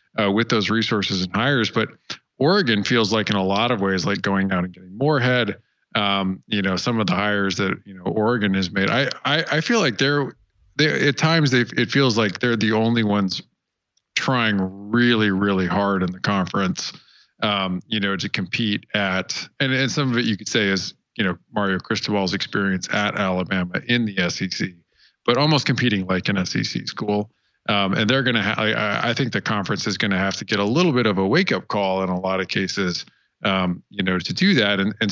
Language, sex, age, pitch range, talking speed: English, male, 40-59, 95-115 Hz, 220 wpm